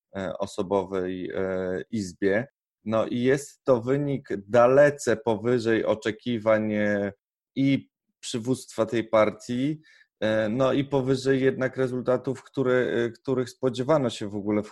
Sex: male